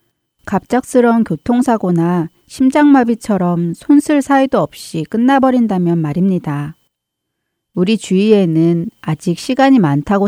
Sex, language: female, Korean